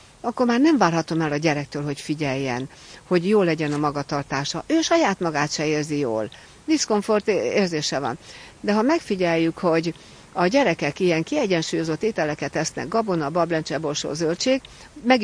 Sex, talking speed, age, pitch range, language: female, 150 wpm, 60-79, 155-215 Hz, Hungarian